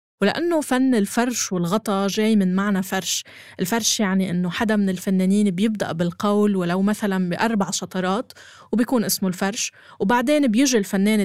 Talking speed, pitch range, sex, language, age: 140 wpm, 185-230 Hz, female, Arabic, 20-39